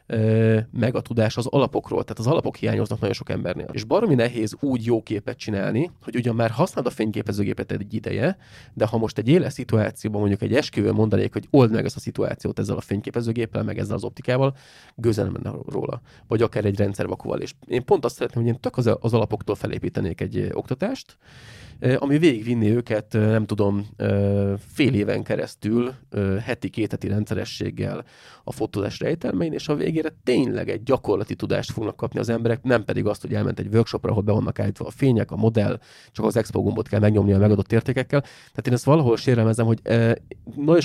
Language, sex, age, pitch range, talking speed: Hungarian, male, 30-49, 105-120 Hz, 180 wpm